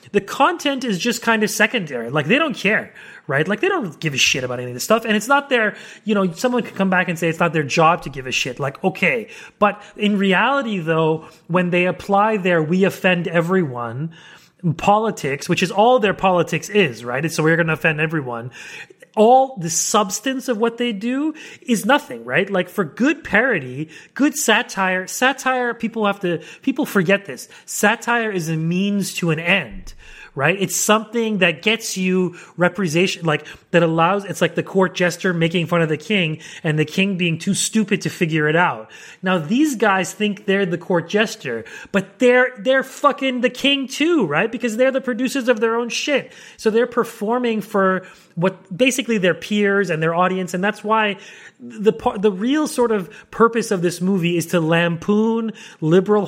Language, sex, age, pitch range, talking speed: English, male, 30-49, 175-230 Hz, 195 wpm